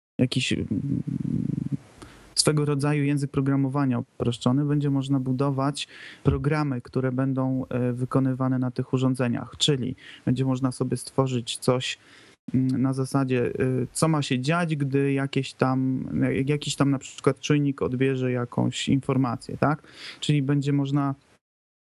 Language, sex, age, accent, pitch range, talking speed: Polish, male, 30-49, native, 125-140 Hz, 115 wpm